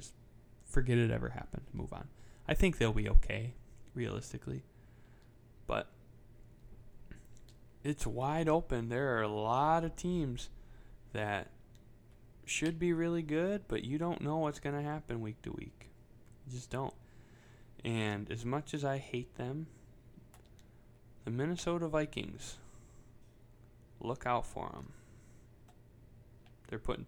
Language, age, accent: English, 10-29, American